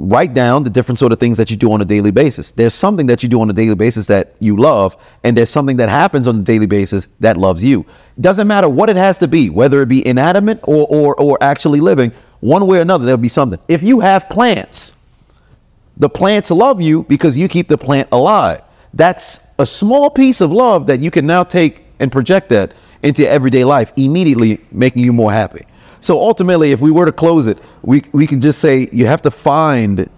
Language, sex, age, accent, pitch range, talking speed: English, male, 40-59, American, 115-155 Hz, 225 wpm